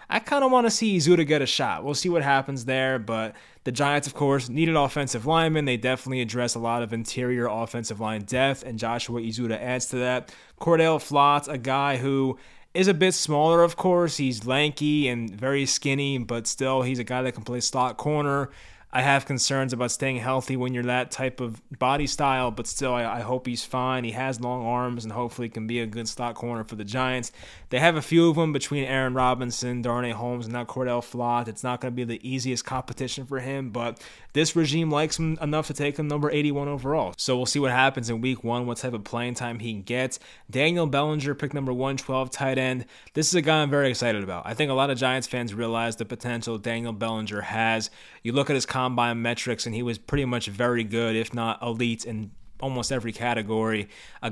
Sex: male